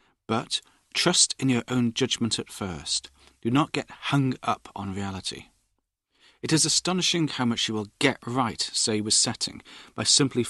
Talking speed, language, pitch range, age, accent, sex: 165 wpm, English, 100-130 Hz, 40-59, British, male